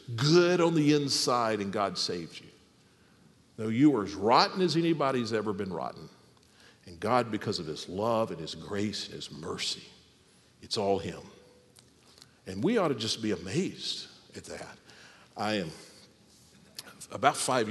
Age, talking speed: 50-69, 160 wpm